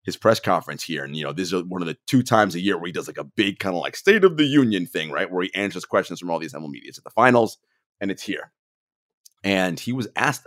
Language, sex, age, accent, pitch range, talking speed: English, male, 30-49, American, 90-125 Hz, 280 wpm